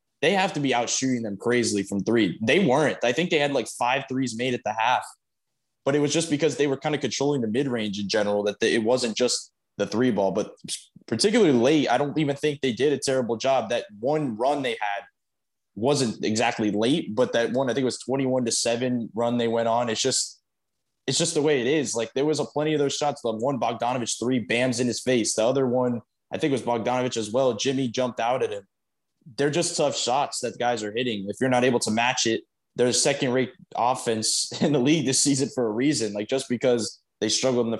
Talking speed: 240 wpm